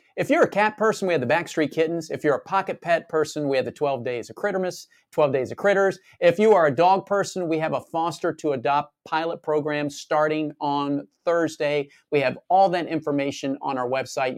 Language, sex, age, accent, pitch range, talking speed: English, male, 40-59, American, 140-180 Hz, 215 wpm